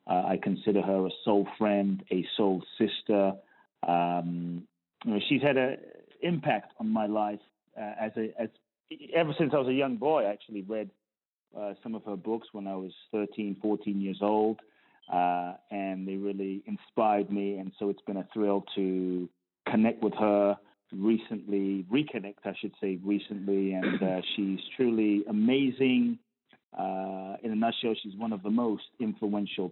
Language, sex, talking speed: English, male, 165 wpm